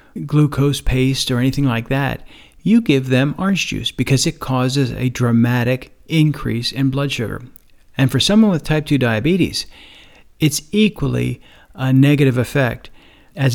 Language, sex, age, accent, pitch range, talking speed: English, male, 40-59, American, 120-150 Hz, 145 wpm